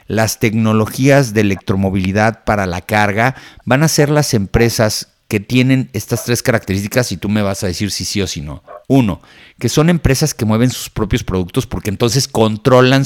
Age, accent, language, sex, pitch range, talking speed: 50-69, Mexican, Spanish, male, 105-130 Hz, 185 wpm